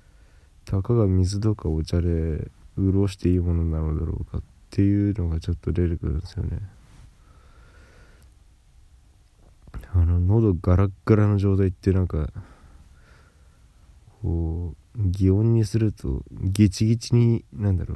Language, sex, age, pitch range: Japanese, male, 20-39, 80-100 Hz